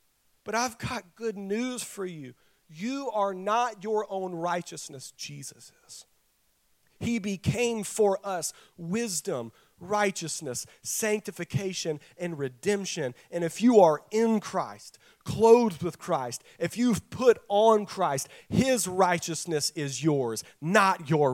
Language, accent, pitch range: English, American, 160-225 Hz